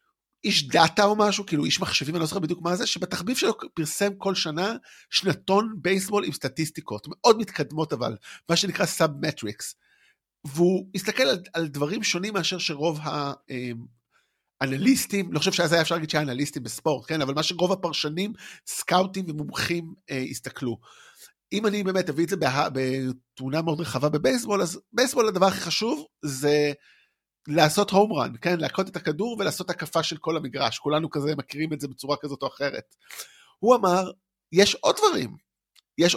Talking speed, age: 165 wpm, 50-69